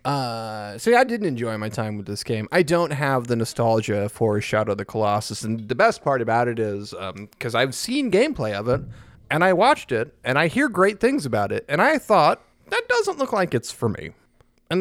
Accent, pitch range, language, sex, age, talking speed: American, 115-165 Hz, English, male, 30-49, 230 wpm